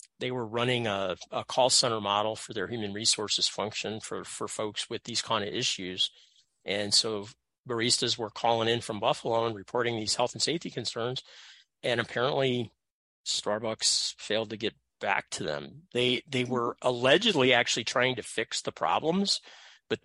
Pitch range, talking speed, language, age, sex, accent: 110-125 Hz, 170 wpm, English, 40-59, male, American